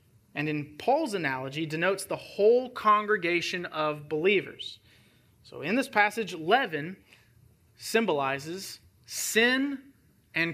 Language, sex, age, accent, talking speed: English, male, 30-49, American, 100 wpm